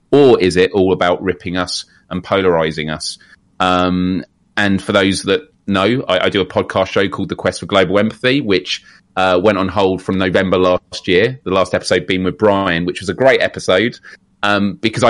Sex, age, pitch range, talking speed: male, 30-49, 90-105 Hz, 200 wpm